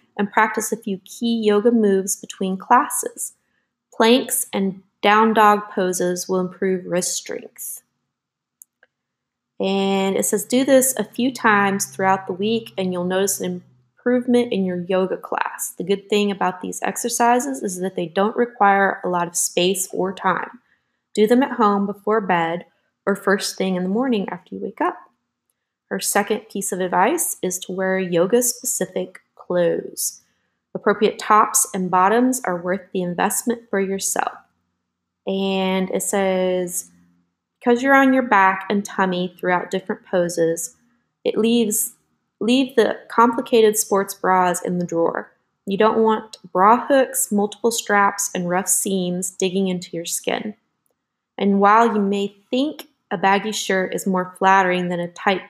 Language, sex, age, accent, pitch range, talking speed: English, female, 20-39, American, 185-220 Hz, 155 wpm